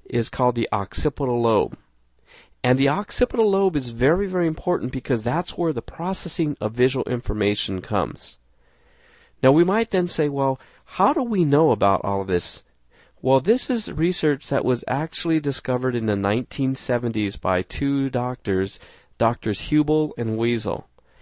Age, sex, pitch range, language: 40-59, male, 115-155 Hz, English